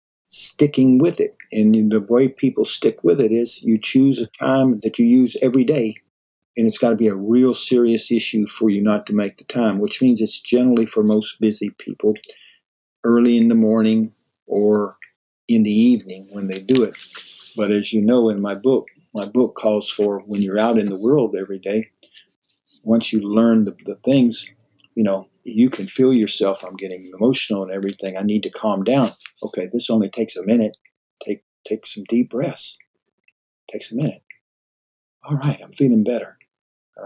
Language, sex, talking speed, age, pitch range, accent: English, male, 190 wpm, 50-69, 105-125 Hz, American